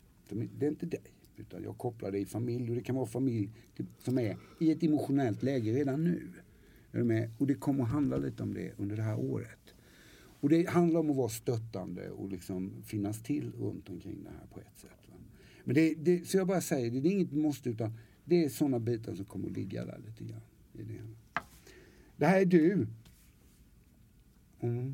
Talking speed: 205 wpm